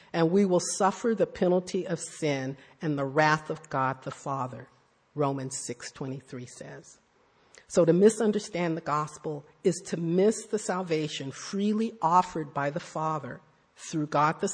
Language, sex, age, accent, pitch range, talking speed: English, female, 50-69, American, 145-195 Hz, 150 wpm